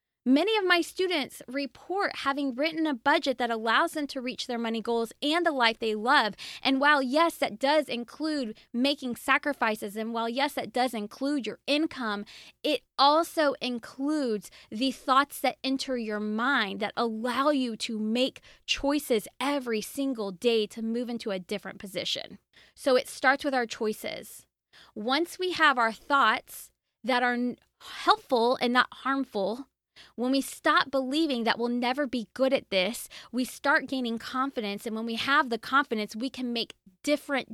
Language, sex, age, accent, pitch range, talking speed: English, female, 20-39, American, 225-280 Hz, 165 wpm